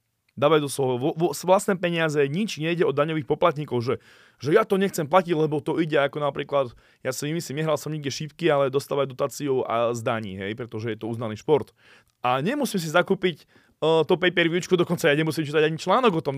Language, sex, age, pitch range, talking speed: Slovak, male, 20-39, 145-180 Hz, 200 wpm